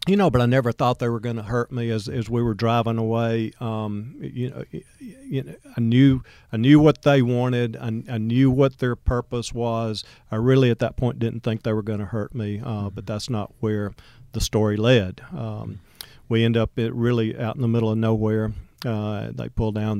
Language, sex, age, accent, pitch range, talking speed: English, male, 50-69, American, 110-125 Hz, 215 wpm